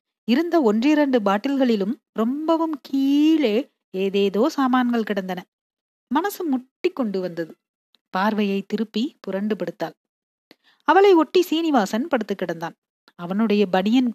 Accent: native